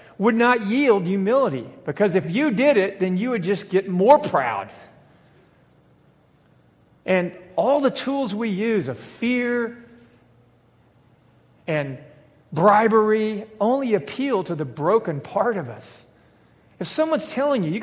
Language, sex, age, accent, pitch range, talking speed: English, male, 50-69, American, 150-220 Hz, 130 wpm